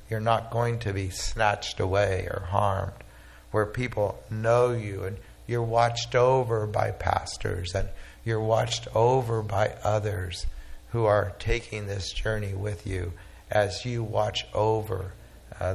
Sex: male